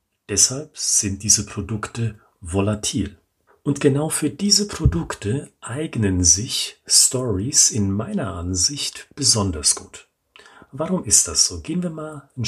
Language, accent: German, German